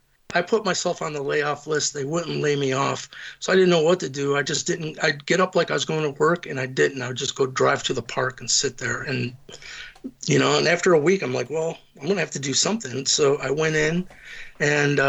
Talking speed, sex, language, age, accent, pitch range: 260 wpm, male, English, 50-69, American, 140-180 Hz